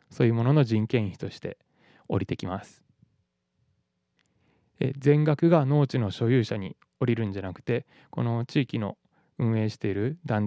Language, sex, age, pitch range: Japanese, male, 20-39, 95-135 Hz